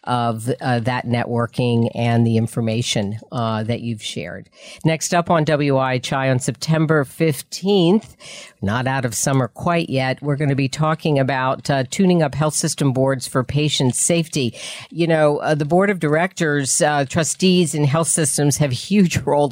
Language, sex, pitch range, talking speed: English, female, 125-155 Hz, 170 wpm